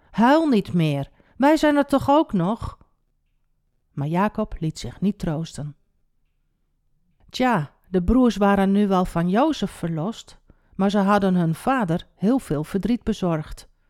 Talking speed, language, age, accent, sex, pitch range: 145 wpm, Dutch, 50-69, Dutch, female, 140-225 Hz